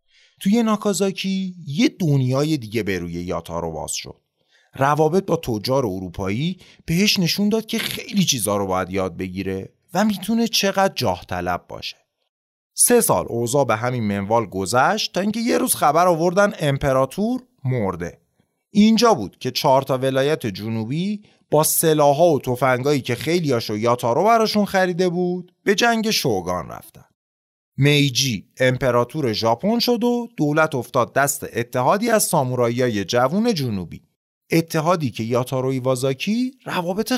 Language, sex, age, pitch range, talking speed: Persian, male, 30-49, 115-195 Hz, 135 wpm